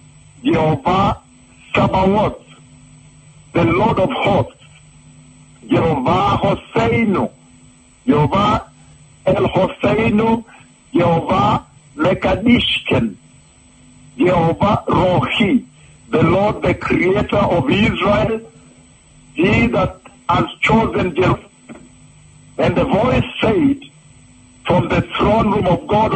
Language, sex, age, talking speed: English, male, 60-79, 85 wpm